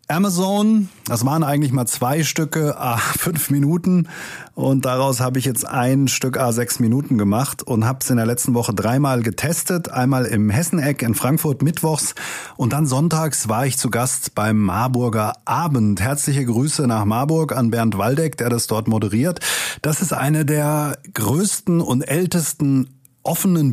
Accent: German